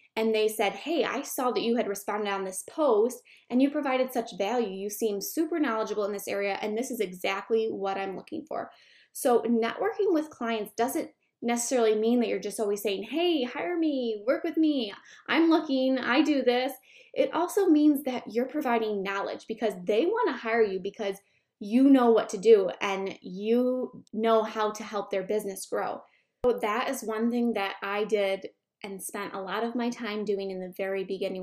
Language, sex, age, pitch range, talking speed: English, female, 10-29, 200-260 Hz, 195 wpm